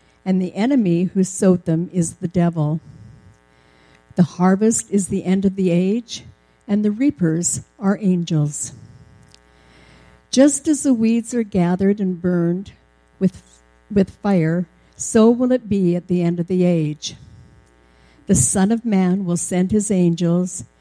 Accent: American